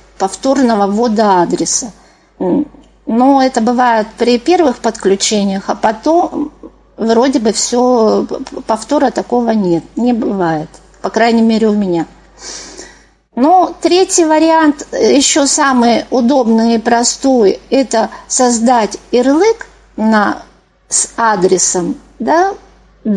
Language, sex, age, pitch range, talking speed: Russian, female, 50-69, 210-280 Hz, 105 wpm